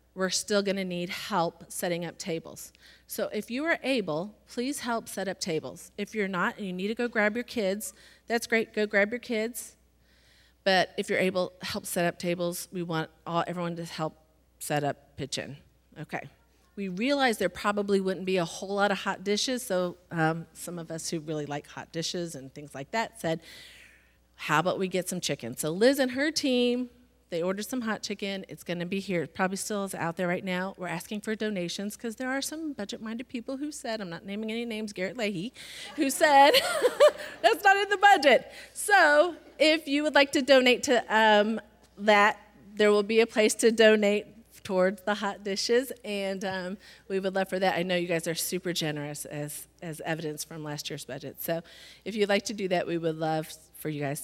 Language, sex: English, female